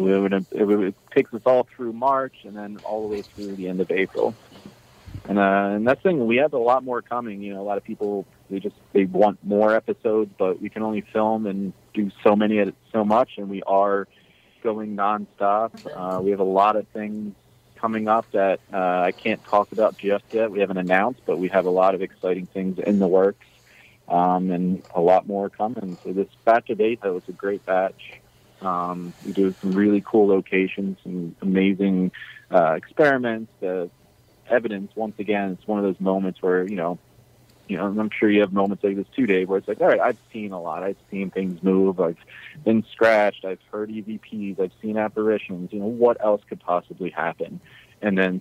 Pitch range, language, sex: 95-105 Hz, English, male